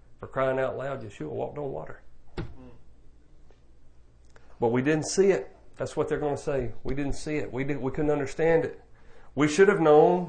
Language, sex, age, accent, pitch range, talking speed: English, male, 40-59, American, 110-145 Hz, 190 wpm